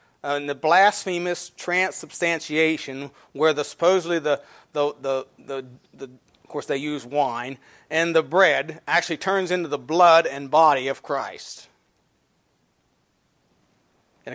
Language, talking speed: English, 125 wpm